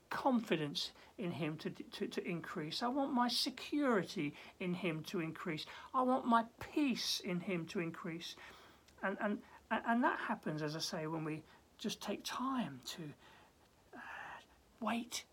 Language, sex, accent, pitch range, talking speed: English, male, British, 175-235 Hz, 155 wpm